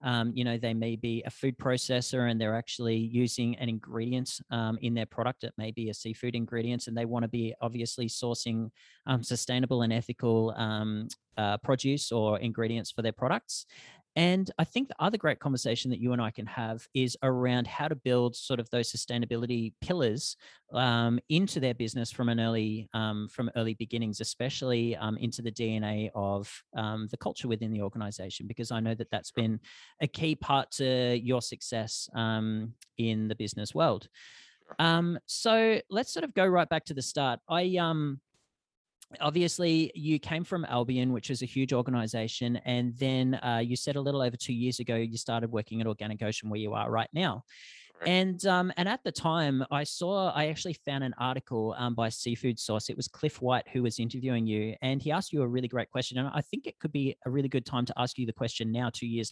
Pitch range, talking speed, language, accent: 115-135 Hz, 205 wpm, English, Australian